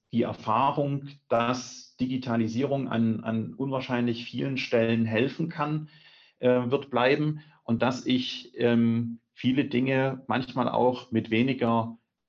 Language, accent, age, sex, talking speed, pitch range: German, German, 40-59, male, 105 wpm, 110-130 Hz